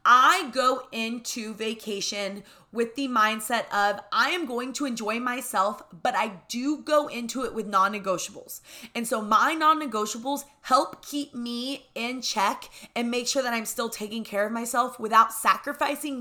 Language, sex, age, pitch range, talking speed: English, female, 20-39, 210-265 Hz, 160 wpm